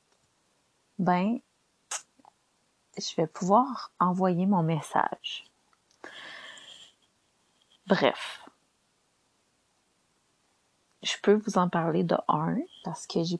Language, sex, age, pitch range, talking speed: French, female, 30-49, 160-205 Hz, 80 wpm